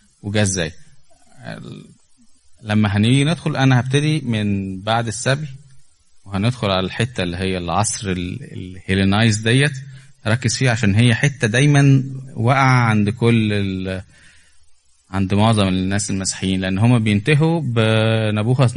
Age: 20-39